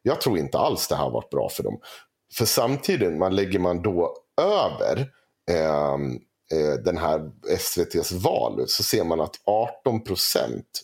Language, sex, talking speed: Swedish, male, 160 wpm